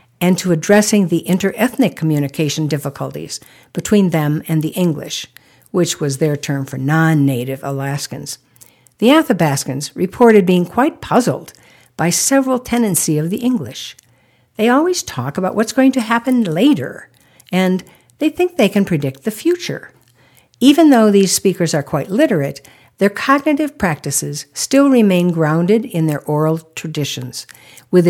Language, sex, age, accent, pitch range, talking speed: English, female, 60-79, American, 140-200 Hz, 140 wpm